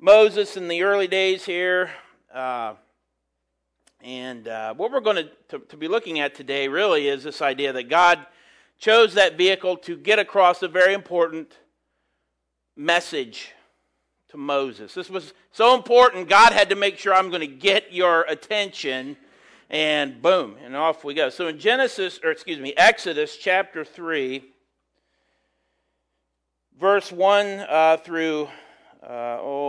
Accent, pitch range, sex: American, 150-195 Hz, male